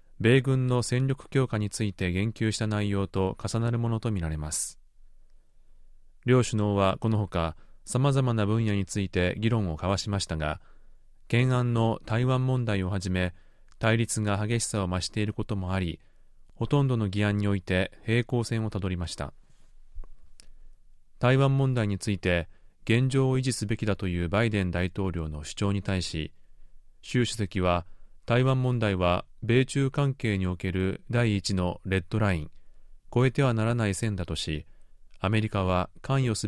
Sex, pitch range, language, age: male, 90-115 Hz, Japanese, 30-49